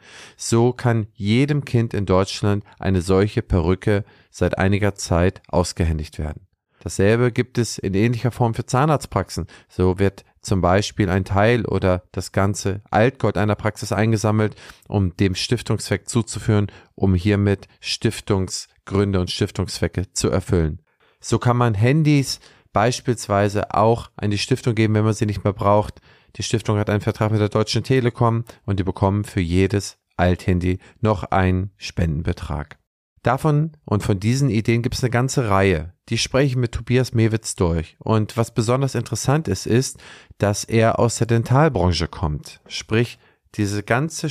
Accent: German